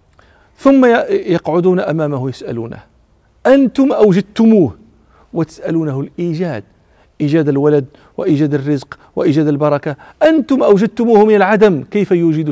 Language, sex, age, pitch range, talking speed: Arabic, male, 40-59, 140-190 Hz, 95 wpm